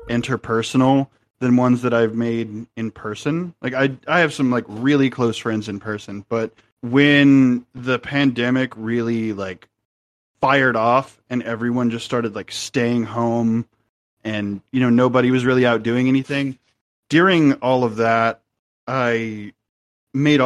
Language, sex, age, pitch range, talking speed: English, male, 20-39, 115-130 Hz, 145 wpm